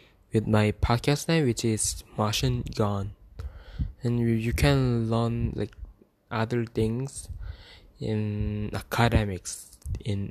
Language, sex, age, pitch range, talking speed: English, male, 20-39, 100-120 Hz, 110 wpm